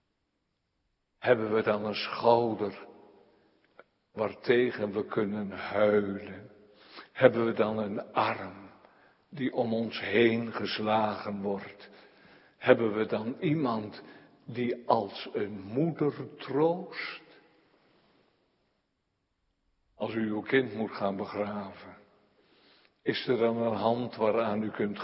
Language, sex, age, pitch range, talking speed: Dutch, male, 60-79, 105-140 Hz, 105 wpm